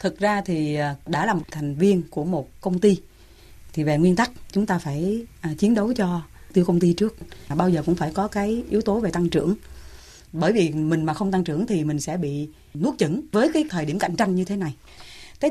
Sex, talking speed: female, 230 wpm